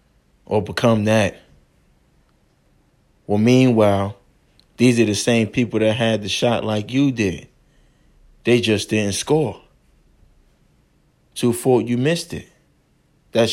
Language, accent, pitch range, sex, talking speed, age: English, American, 100-125 Hz, male, 120 wpm, 20-39